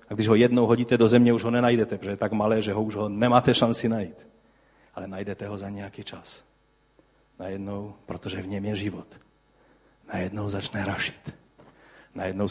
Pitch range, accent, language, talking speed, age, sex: 105-145 Hz, native, Czech, 175 wpm, 40-59, male